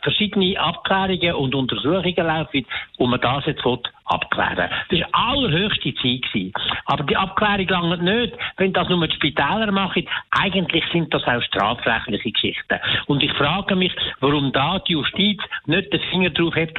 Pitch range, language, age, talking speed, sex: 145-195 Hz, German, 60-79, 160 wpm, male